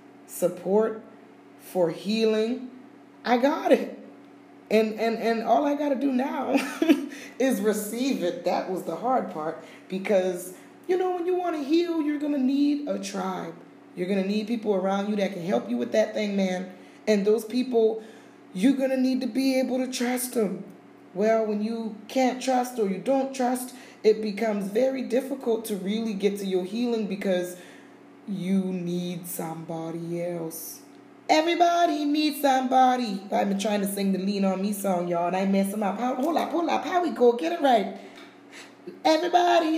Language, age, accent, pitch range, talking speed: English, 20-39, American, 200-270 Hz, 180 wpm